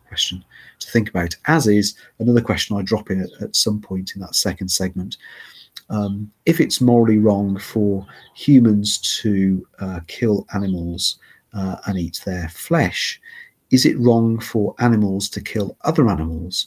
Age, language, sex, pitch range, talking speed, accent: 40-59, English, male, 95-115 Hz, 160 wpm, British